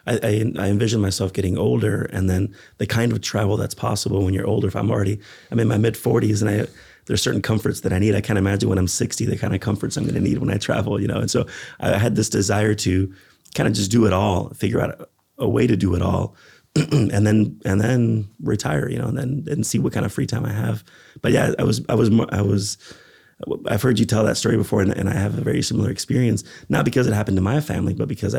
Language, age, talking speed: English, 30-49, 265 wpm